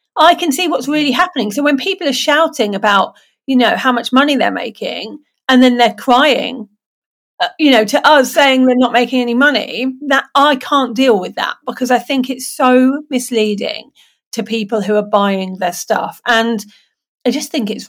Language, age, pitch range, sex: English, 40-59, 205-260 Hz, female